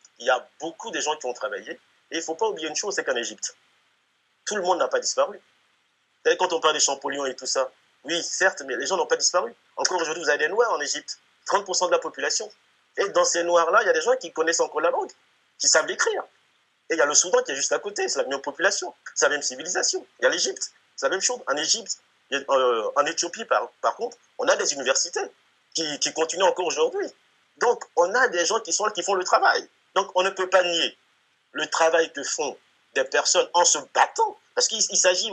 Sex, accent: male, French